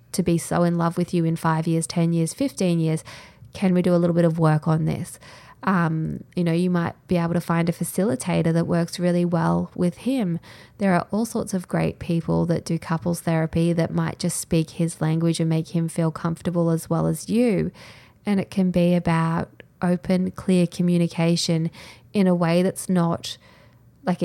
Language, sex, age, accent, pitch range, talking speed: English, female, 20-39, Australian, 160-180 Hz, 200 wpm